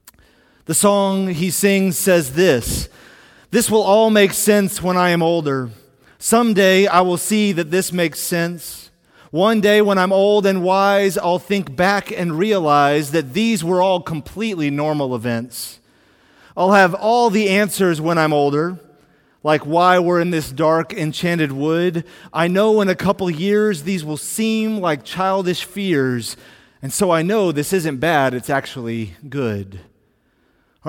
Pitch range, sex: 155-200 Hz, male